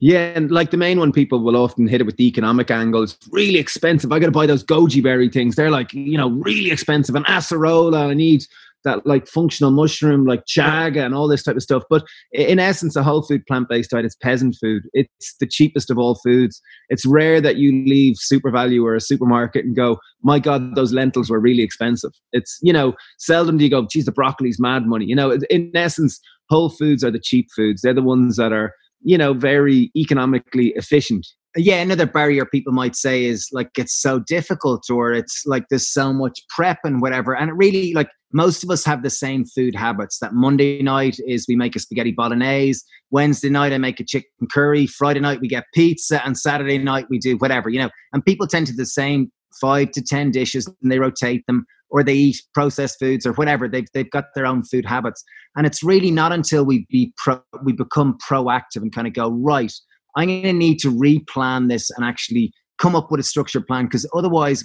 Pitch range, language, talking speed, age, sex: 125-150 Hz, English, 220 wpm, 20-39, male